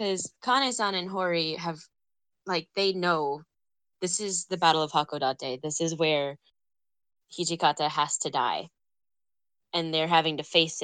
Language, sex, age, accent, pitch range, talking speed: English, female, 10-29, American, 150-180 Hz, 145 wpm